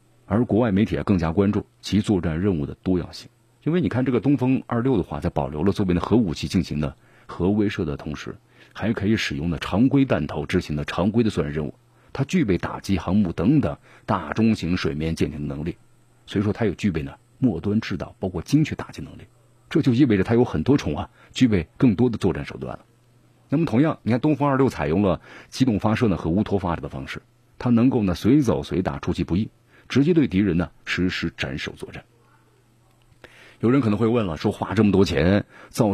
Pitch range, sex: 85-120 Hz, male